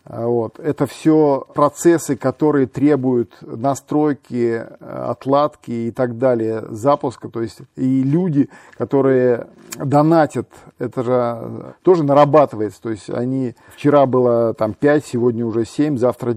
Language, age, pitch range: Russian, 40-59, 120-145 Hz